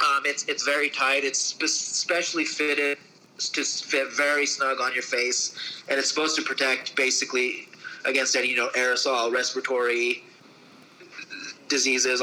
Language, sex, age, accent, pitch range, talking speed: English, male, 30-49, American, 120-145 Hz, 135 wpm